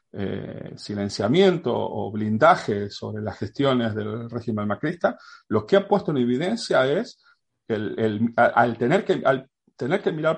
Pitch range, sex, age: 110-170 Hz, male, 40-59